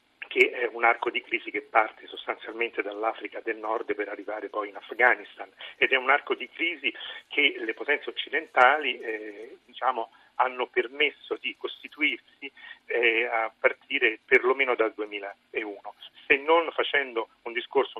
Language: Italian